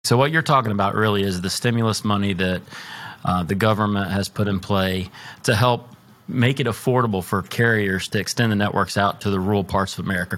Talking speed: 210 wpm